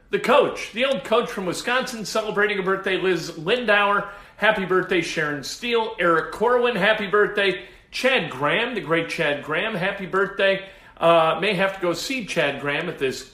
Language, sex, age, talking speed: English, male, 50-69, 170 wpm